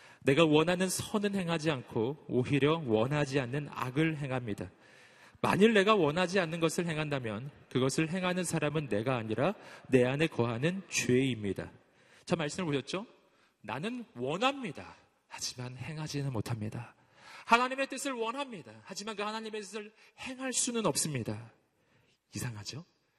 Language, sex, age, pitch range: Korean, male, 40-59, 130-220 Hz